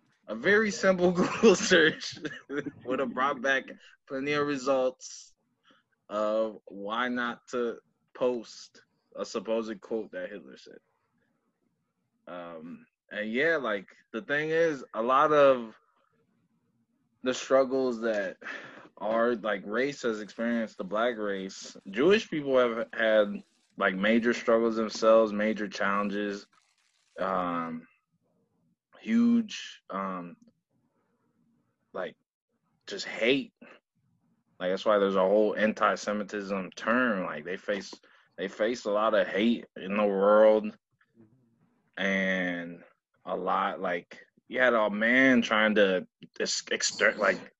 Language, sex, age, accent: English, male, 20-39, American